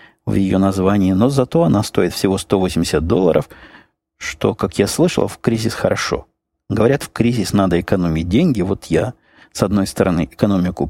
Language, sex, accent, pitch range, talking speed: Russian, male, native, 90-105 Hz, 160 wpm